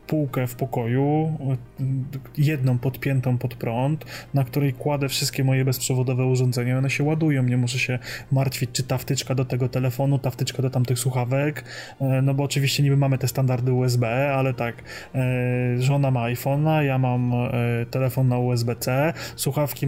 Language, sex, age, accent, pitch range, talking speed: Polish, male, 20-39, native, 125-140 Hz, 155 wpm